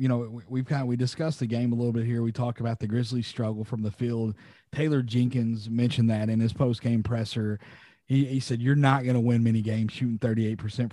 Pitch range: 115-135 Hz